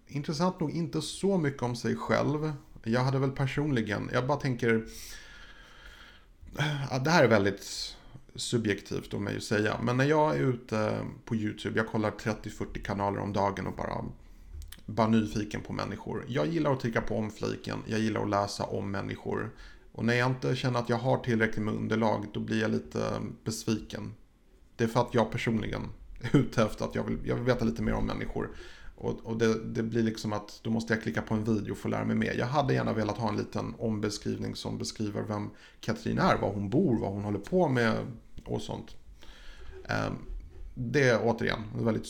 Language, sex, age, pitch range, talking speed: Swedish, male, 30-49, 105-120 Hz, 195 wpm